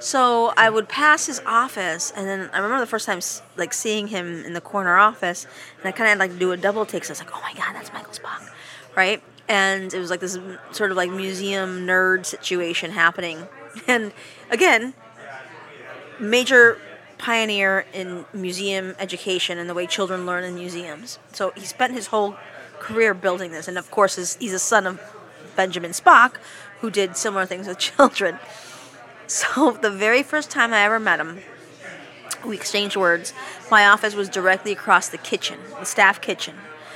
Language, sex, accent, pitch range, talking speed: English, female, American, 180-210 Hz, 185 wpm